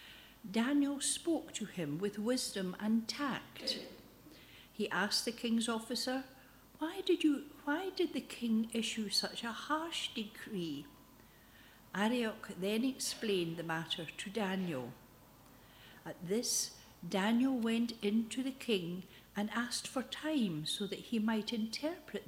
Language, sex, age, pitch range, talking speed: English, female, 60-79, 170-235 Hz, 130 wpm